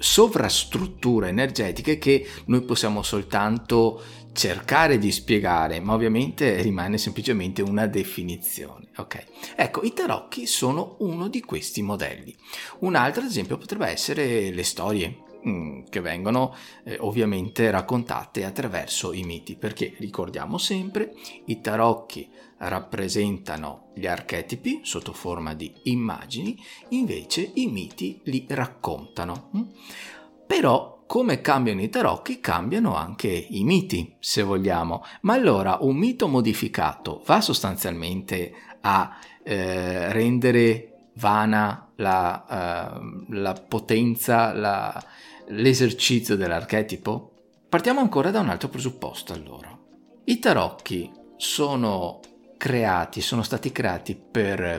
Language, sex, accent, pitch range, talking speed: Italian, male, native, 100-135 Hz, 105 wpm